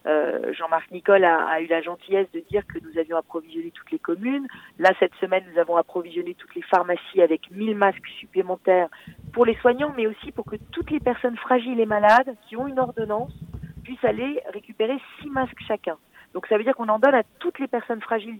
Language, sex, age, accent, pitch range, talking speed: French, female, 40-59, French, 190-255 Hz, 210 wpm